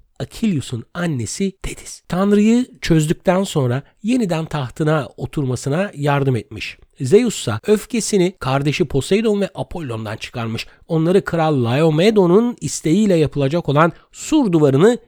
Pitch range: 120-185 Hz